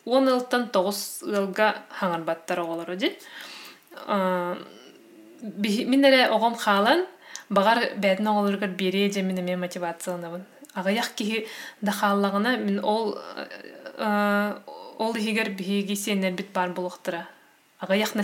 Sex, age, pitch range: female, 20-39, 195-255 Hz